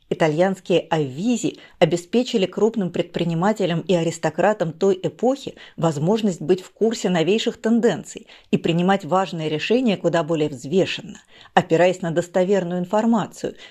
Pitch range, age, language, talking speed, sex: 170-215 Hz, 40-59, Russian, 115 wpm, female